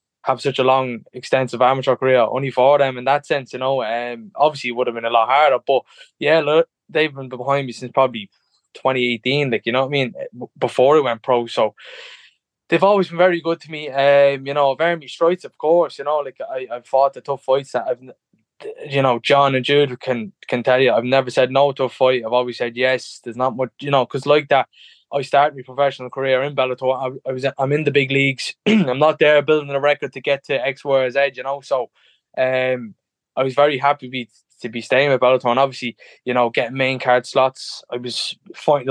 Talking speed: 235 wpm